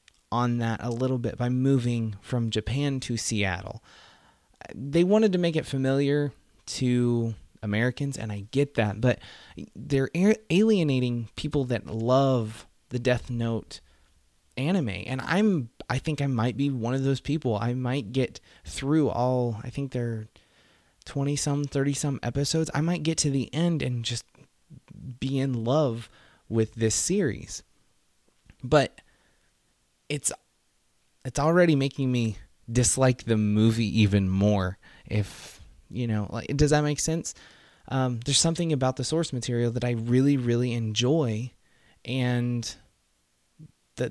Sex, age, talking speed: male, 20-39, 140 wpm